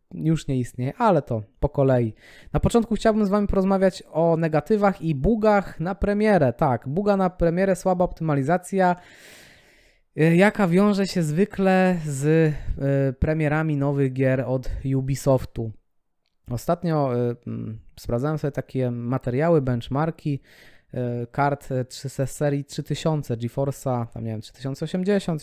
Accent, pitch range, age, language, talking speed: native, 135-175 Hz, 20-39, Polish, 130 wpm